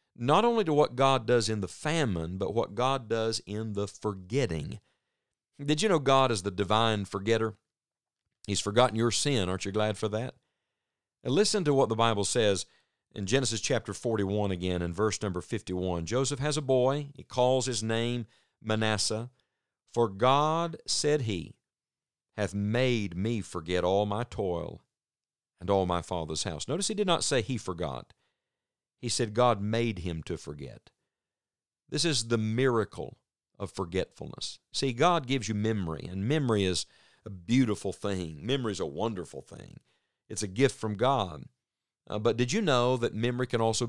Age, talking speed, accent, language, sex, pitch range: 50-69, 170 wpm, American, English, male, 100-130 Hz